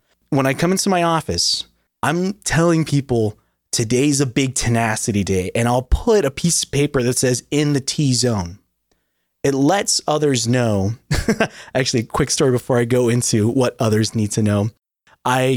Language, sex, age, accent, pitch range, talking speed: English, male, 20-39, American, 110-140 Hz, 165 wpm